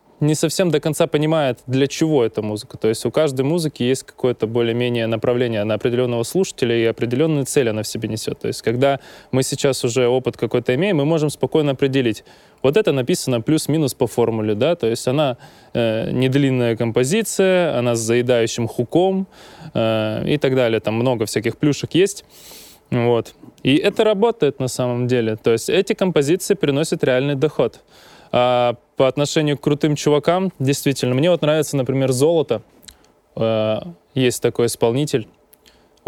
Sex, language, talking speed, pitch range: male, Russian, 160 wpm, 115-150 Hz